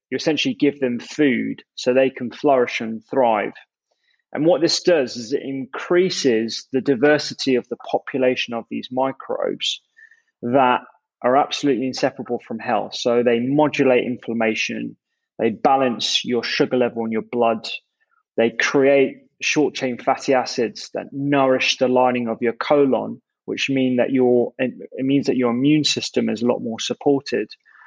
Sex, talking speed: male, 155 wpm